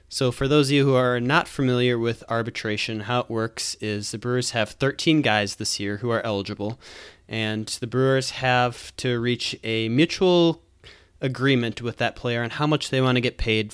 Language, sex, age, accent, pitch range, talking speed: English, male, 20-39, American, 110-130 Hz, 195 wpm